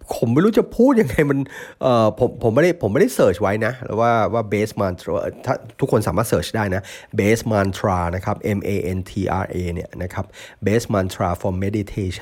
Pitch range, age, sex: 95-120 Hz, 30-49, male